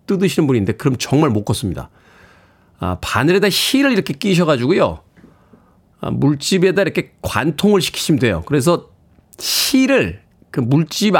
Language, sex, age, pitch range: Korean, male, 40-59, 115-180 Hz